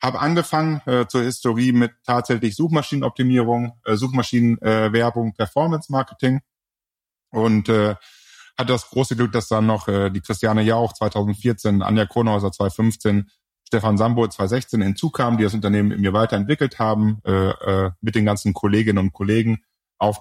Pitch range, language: 100-120 Hz, German